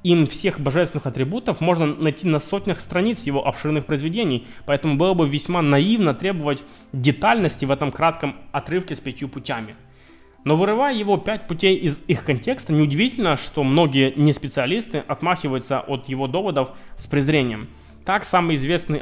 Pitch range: 135-170 Hz